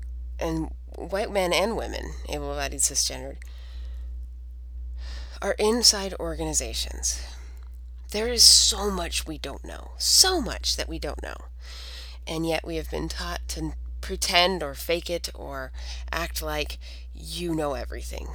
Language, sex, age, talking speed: English, female, 30-49, 135 wpm